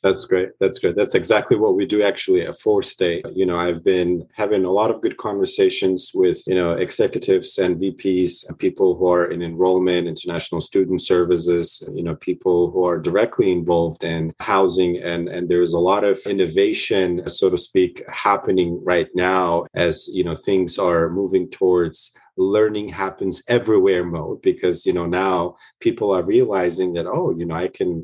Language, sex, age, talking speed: English, male, 30-49, 180 wpm